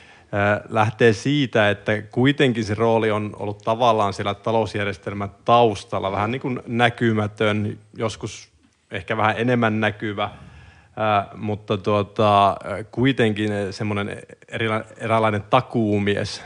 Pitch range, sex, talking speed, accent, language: 100-115 Hz, male, 100 wpm, native, Finnish